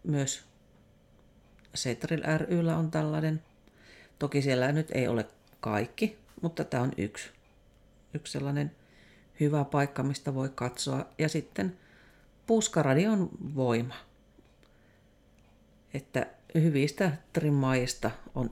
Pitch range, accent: 115-150 Hz, native